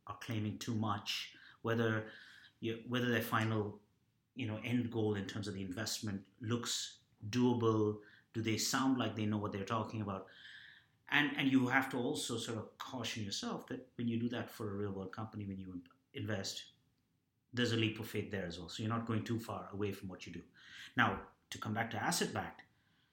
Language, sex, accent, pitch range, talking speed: English, male, Indian, 105-125 Hz, 195 wpm